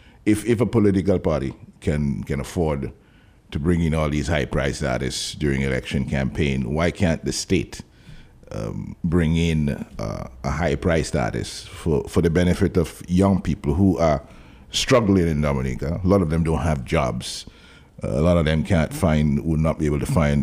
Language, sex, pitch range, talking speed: English, male, 75-100 Hz, 180 wpm